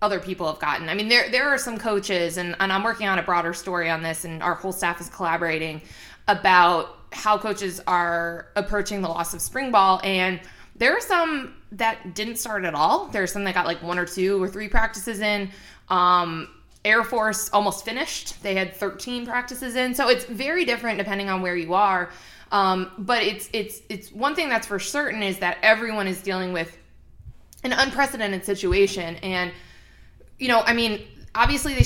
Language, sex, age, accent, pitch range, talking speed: English, female, 20-39, American, 180-220 Hz, 195 wpm